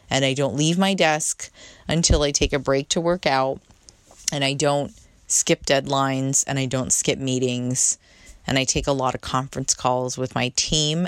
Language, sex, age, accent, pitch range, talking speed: English, female, 30-49, American, 125-155 Hz, 190 wpm